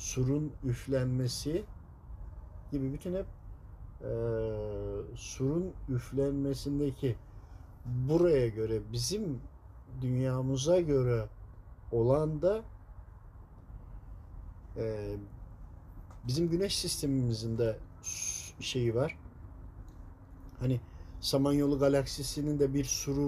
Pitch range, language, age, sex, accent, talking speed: 100-150 Hz, Turkish, 50-69, male, native, 70 wpm